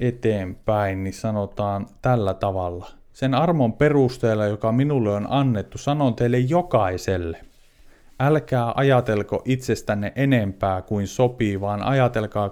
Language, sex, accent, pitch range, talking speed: Finnish, male, native, 105-130 Hz, 105 wpm